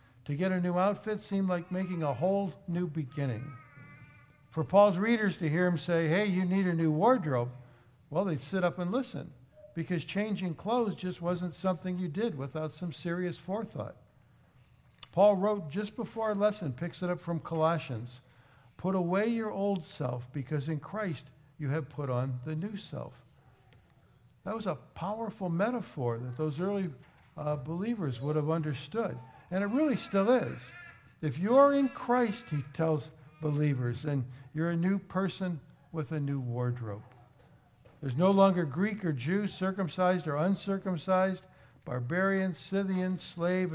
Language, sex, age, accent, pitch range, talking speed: English, male, 60-79, American, 135-190 Hz, 160 wpm